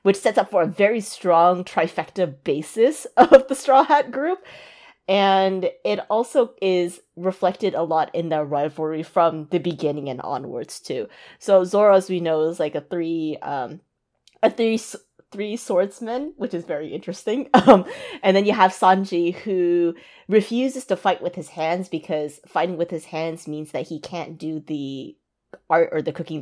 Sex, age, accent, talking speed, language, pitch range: female, 30-49, American, 175 wpm, English, 155-195 Hz